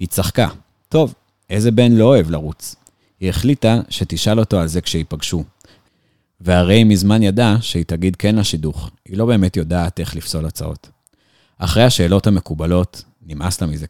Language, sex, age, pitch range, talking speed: Hebrew, male, 30-49, 85-110 Hz, 155 wpm